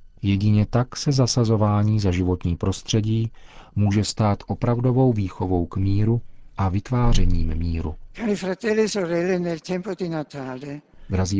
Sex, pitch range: male, 95-115 Hz